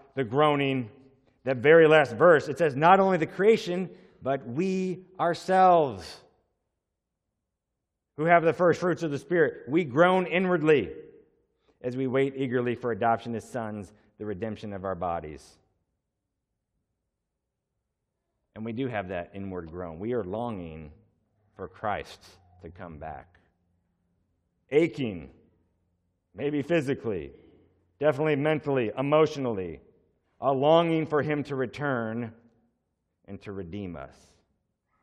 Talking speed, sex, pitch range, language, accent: 120 wpm, male, 100-155 Hz, English, American